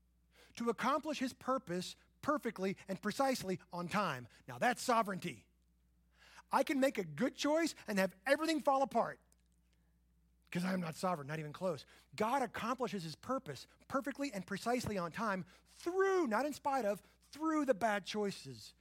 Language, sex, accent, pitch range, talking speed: English, male, American, 170-245 Hz, 155 wpm